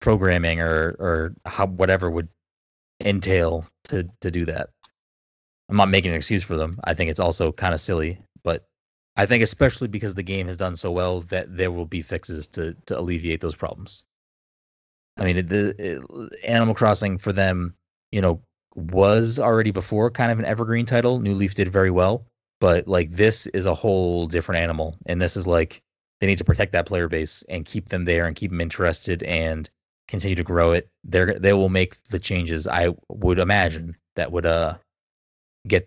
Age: 20-39